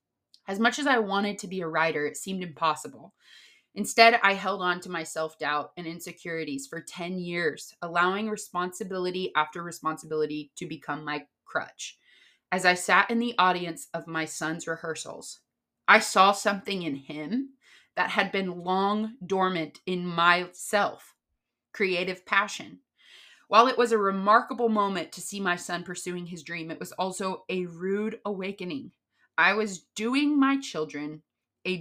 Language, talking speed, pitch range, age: English, 155 wpm, 170-220 Hz, 20-39